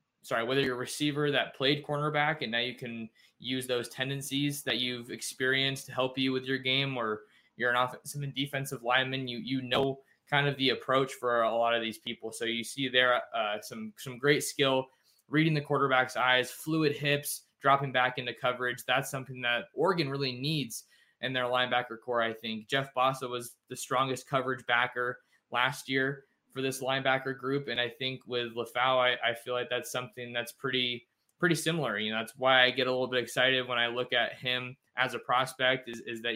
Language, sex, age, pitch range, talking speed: English, male, 20-39, 120-135 Hz, 205 wpm